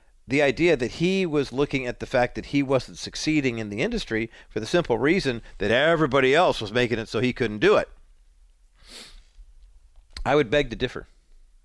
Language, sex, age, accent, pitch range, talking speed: English, male, 50-69, American, 110-150 Hz, 185 wpm